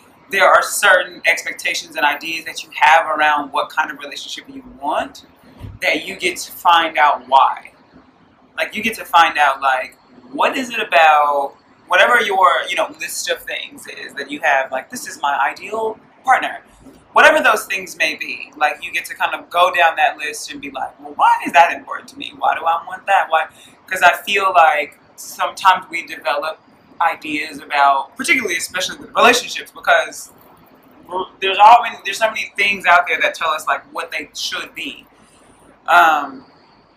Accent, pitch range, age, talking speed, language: American, 150-220 Hz, 20-39, 185 wpm, English